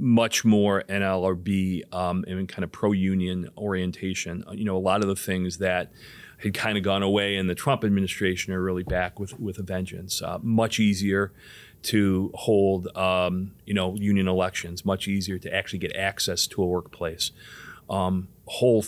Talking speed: 170 wpm